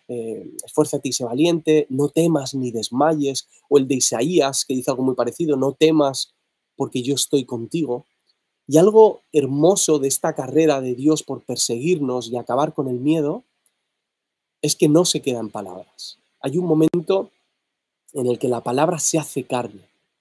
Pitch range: 130-160 Hz